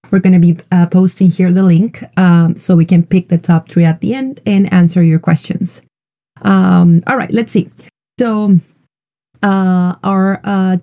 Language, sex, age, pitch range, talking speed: English, female, 30-49, 170-200 Hz, 175 wpm